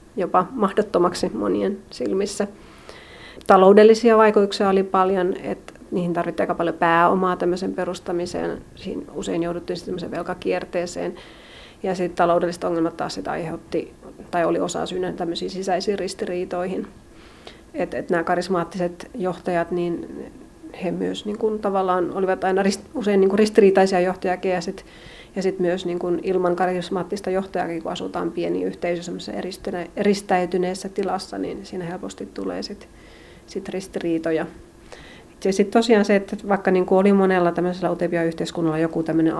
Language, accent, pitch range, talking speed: Finnish, native, 175-195 Hz, 130 wpm